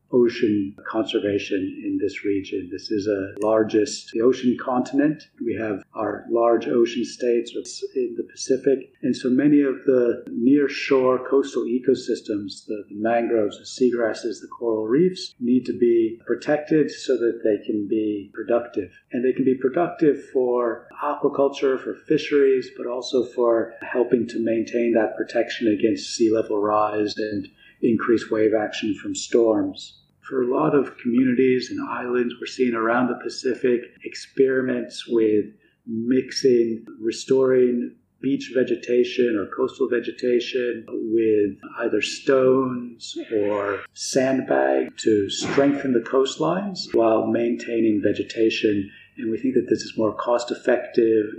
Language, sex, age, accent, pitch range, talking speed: English, male, 50-69, American, 110-135 Hz, 135 wpm